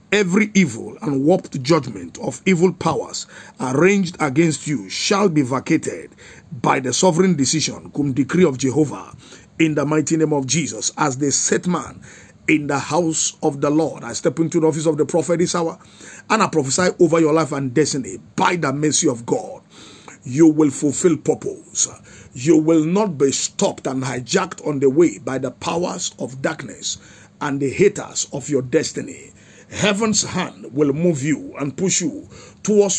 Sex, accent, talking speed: male, Nigerian, 175 wpm